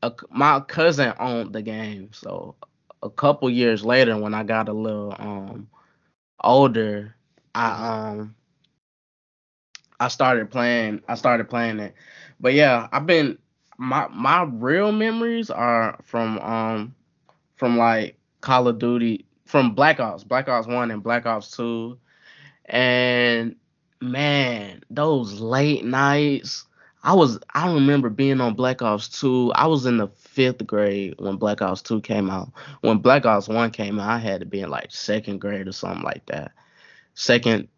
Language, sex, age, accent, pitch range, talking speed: English, male, 10-29, American, 105-125 Hz, 150 wpm